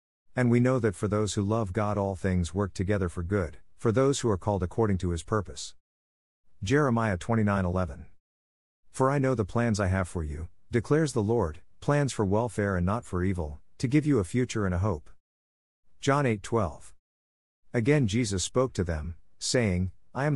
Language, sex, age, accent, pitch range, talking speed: English, male, 50-69, American, 85-115 Hz, 190 wpm